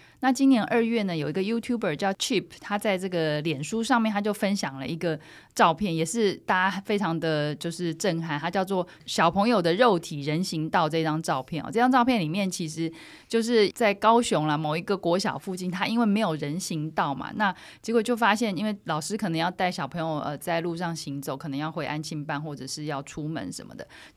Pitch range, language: 155-205 Hz, Chinese